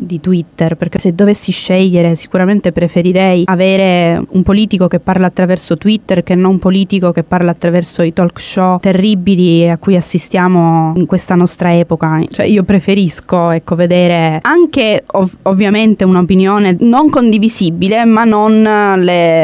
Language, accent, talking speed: English, Italian, 145 wpm